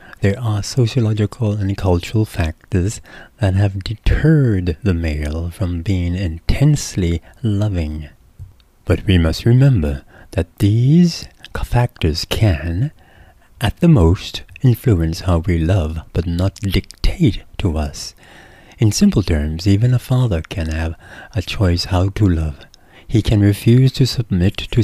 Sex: male